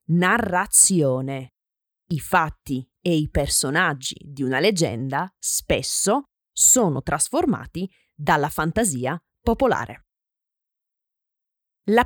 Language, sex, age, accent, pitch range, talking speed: Italian, female, 20-39, native, 155-240 Hz, 80 wpm